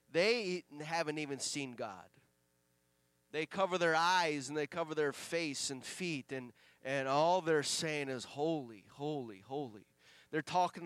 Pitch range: 150-185 Hz